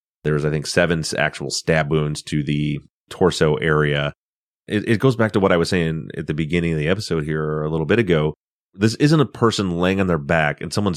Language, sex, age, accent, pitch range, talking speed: English, male, 30-49, American, 80-95 Hz, 230 wpm